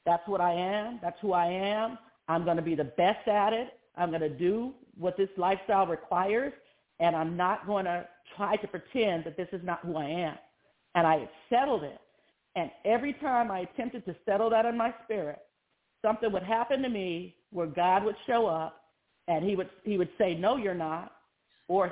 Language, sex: English, female